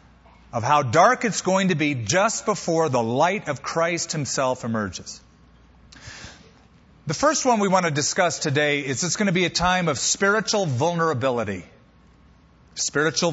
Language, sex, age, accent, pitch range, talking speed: English, male, 40-59, American, 115-170 Hz, 155 wpm